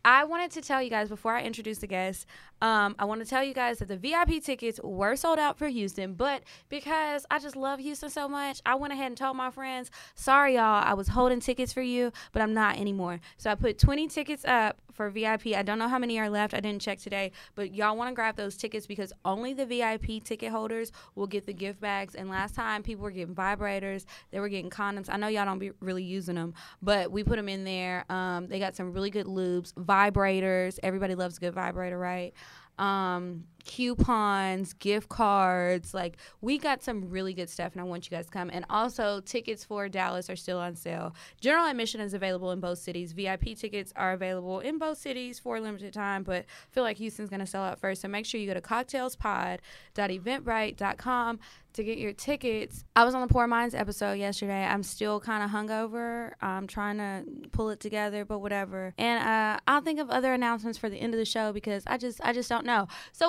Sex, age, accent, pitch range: female, 10-29, American, 190-240 Hz